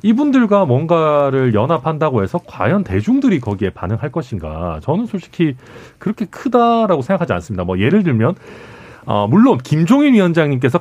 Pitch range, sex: 110-180 Hz, male